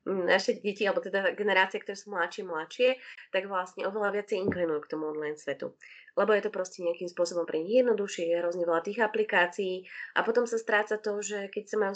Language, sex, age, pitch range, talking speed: Slovak, female, 20-39, 175-215 Hz, 205 wpm